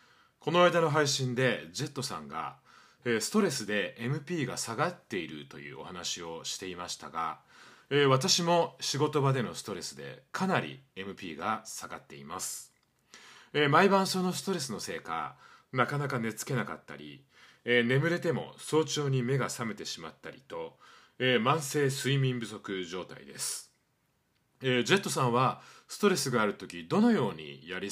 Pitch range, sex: 115-160 Hz, male